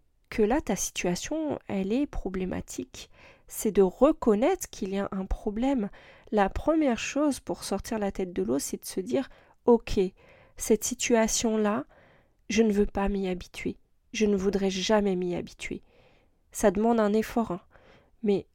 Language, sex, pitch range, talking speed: French, female, 195-240 Hz, 160 wpm